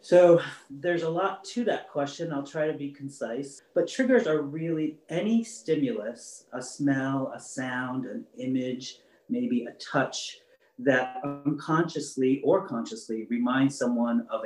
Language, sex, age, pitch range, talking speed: English, male, 40-59, 120-155 Hz, 140 wpm